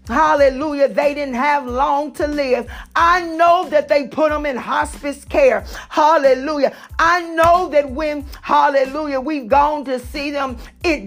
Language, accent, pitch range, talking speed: English, American, 280-325 Hz, 150 wpm